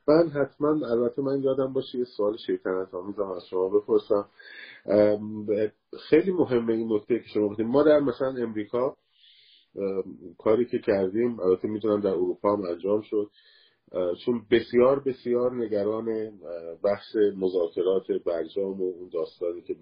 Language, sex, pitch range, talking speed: Persian, male, 95-145 Hz, 135 wpm